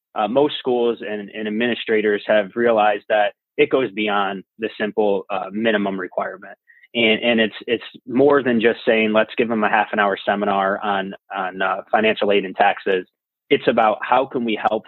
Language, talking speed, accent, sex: English, 185 wpm, American, male